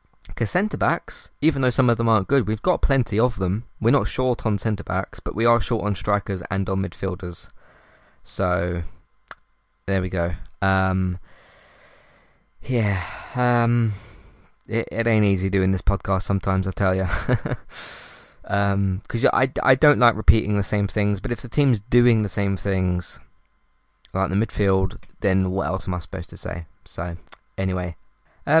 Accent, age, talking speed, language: British, 20-39, 160 wpm, English